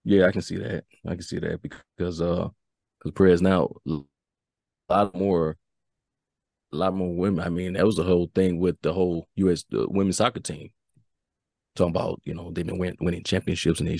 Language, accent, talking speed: English, American, 195 wpm